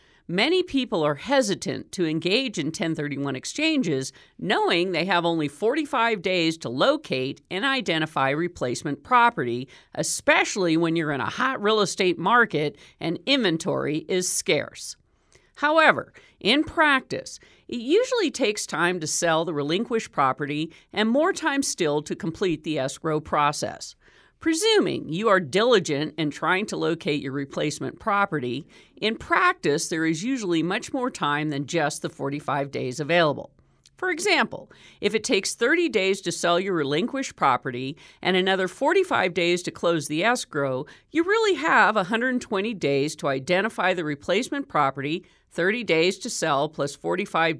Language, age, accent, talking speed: English, 50-69, American, 145 wpm